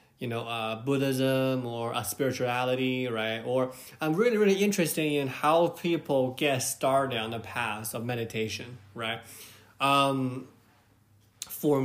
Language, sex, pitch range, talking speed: English, male, 115-145 Hz, 130 wpm